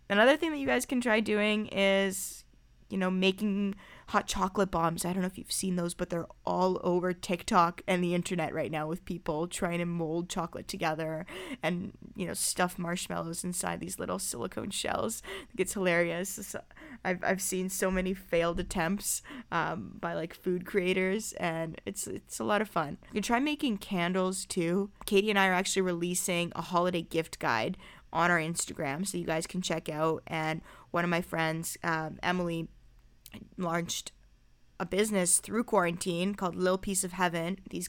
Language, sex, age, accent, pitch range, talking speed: English, female, 20-39, American, 170-195 Hz, 180 wpm